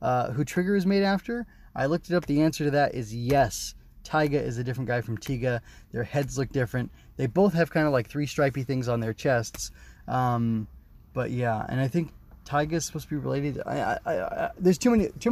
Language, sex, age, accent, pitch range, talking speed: English, male, 20-39, American, 120-160 Hz, 230 wpm